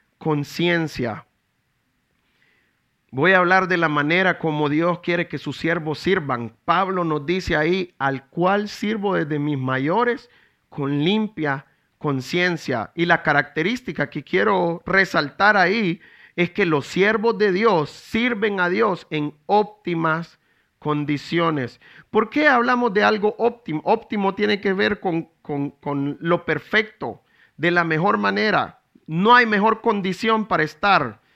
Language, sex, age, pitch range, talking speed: English, male, 40-59, 150-210 Hz, 135 wpm